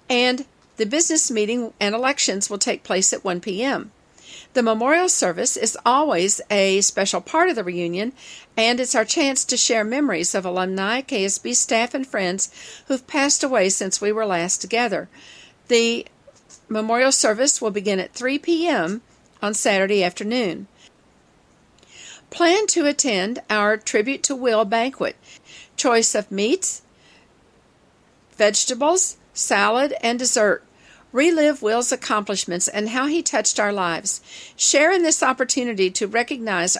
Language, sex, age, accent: English, female, 50-69, American